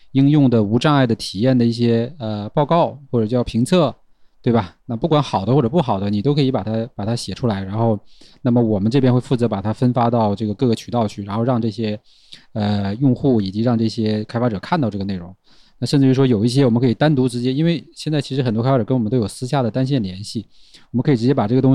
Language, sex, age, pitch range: Chinese, male, 20-39, 110-130 Hz